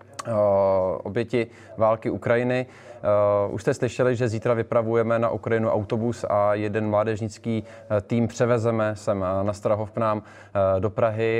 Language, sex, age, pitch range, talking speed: Czech, male, 20-39, 105-120 Hz, 115 wpm